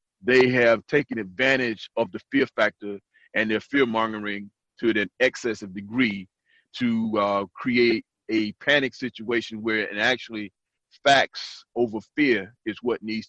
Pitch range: 115-185 Hz